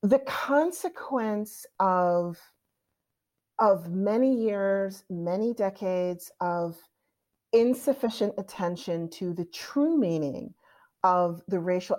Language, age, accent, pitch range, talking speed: English, 40-59, American, 175-235 Hz, 90 wpm